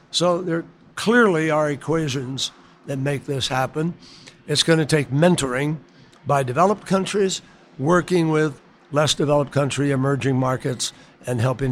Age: 60-79